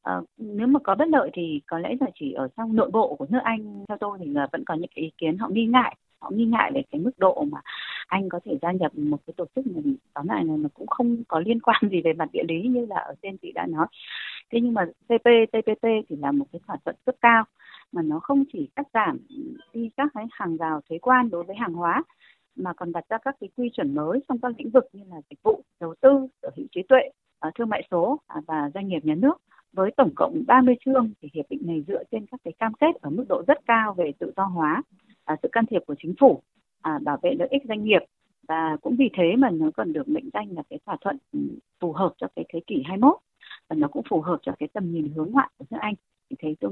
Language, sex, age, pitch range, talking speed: Vietnamese, female, 20-39, 175-270 Hz, 260 wpm